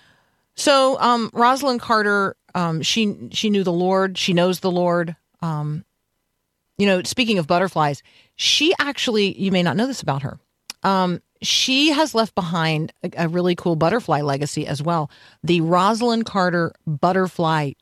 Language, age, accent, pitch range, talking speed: English, 40-59, American, 160-210 Hz, 155 wpm